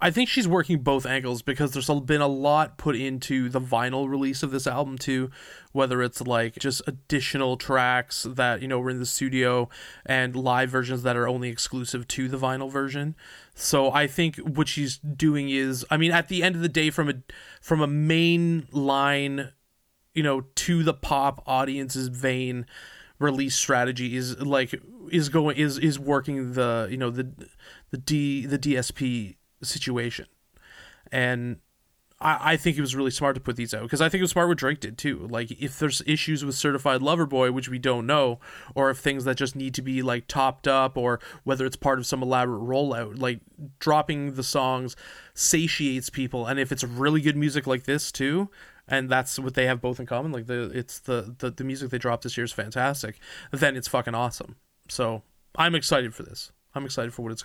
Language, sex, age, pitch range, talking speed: English, male, 20-39, 125-145 Hz, 200 wpm